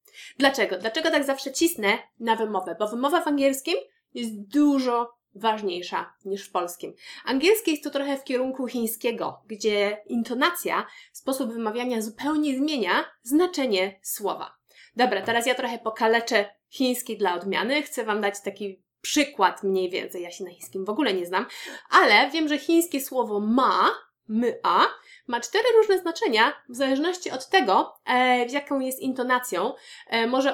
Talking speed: 150 wpm